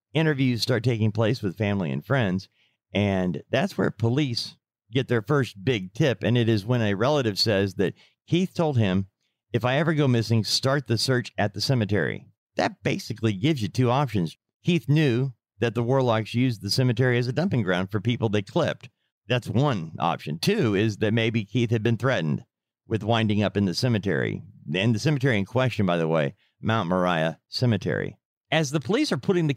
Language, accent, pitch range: English, American, 110-145 Hz